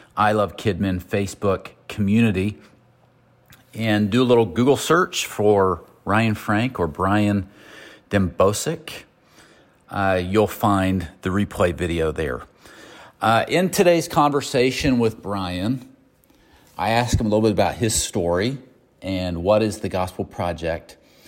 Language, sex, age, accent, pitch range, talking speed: English, male, 40-59, American, 90-120 Hz, 125 wpm